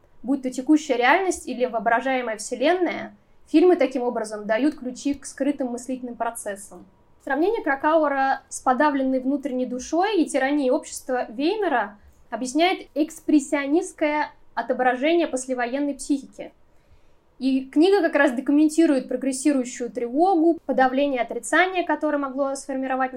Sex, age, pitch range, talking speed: female, 10-29, 255-305 Hz, 110 wpm